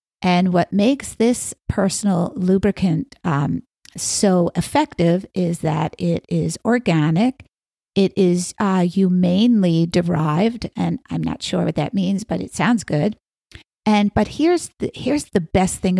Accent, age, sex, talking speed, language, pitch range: American, 50-69, female, 145 wpm, English, 165-225 Hz